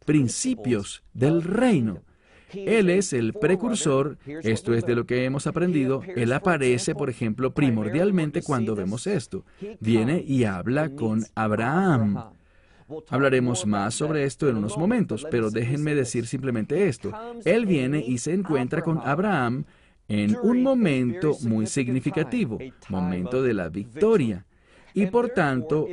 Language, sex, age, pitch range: English, male, 40-59, 110-175 Hz